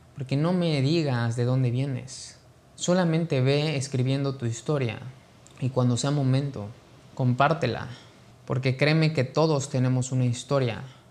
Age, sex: 20-39, male